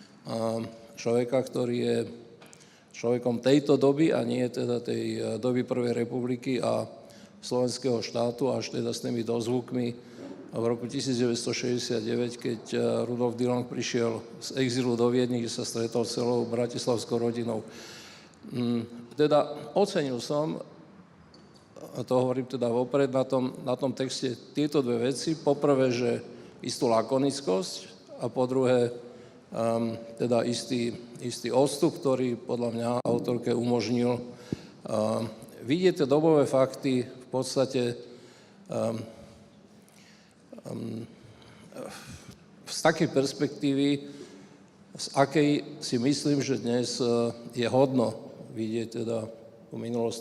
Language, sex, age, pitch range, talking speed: Slovak, male, 50-69, 115-130 Hz, 115 wpm